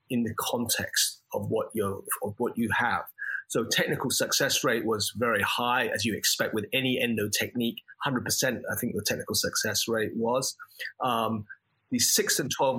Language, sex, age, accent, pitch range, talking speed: English, male, 30-49, British, 115-150 Hz, 175 wpm